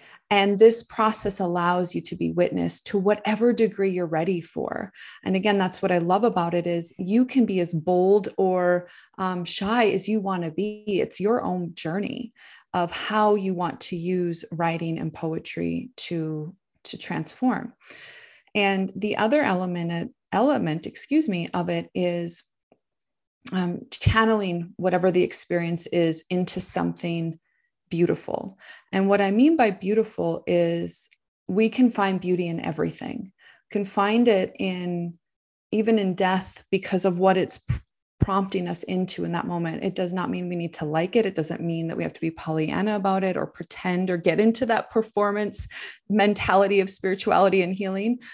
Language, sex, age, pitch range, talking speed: English, female, 20-39, 175-210 Hz, 165 wpm